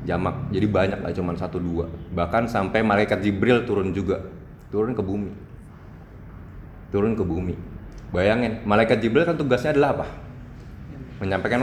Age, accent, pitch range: 20-39, native, 90-135 Hz